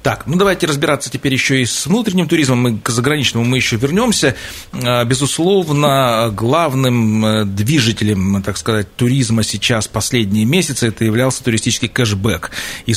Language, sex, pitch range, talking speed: Russian, male, 110-135 Hz, 140 wpm